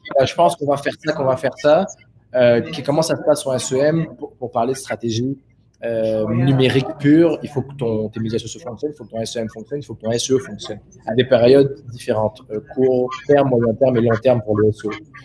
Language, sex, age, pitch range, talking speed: French, male, 20-39, 120-145 Hz, 240 wpm